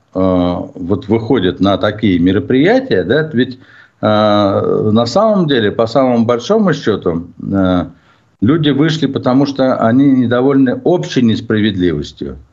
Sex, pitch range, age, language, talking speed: male, 95-130 Hz, 60-79, Russian, 115 wpm